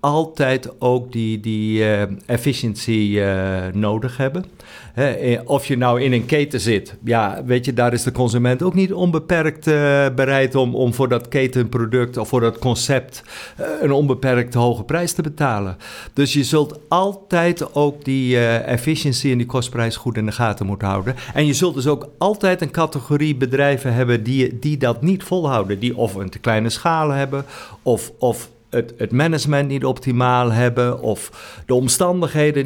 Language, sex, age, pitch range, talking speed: Dutch, male, 50-69, 115-145 Hz, 160 wpm